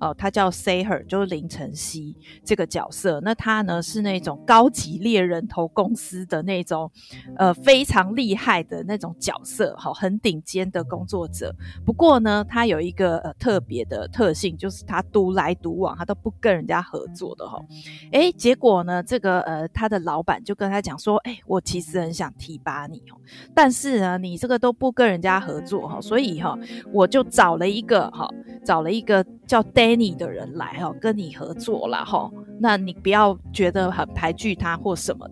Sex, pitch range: female, 175-235 Hz